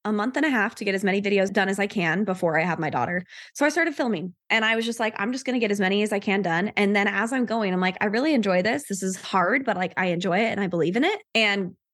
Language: English